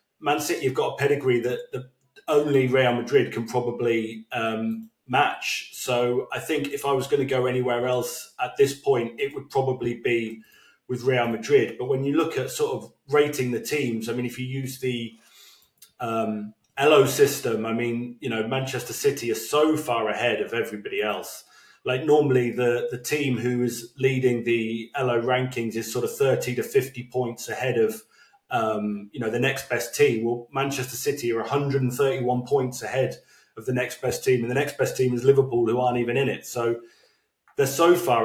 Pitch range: 115-135 Hz